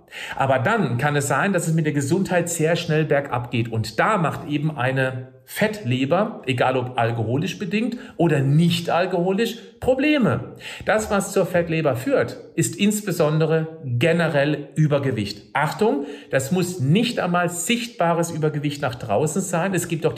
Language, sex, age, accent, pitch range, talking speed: German, male, 50-69, German, 135-180 Hz, 150 wpm